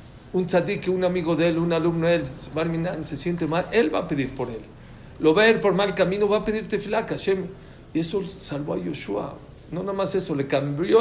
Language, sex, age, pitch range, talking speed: English, male, 50-69, 135-185 Hz, 230 wpm